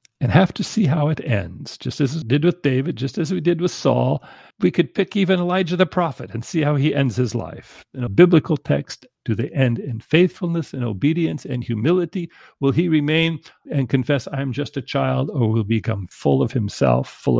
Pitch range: 115-145 Hz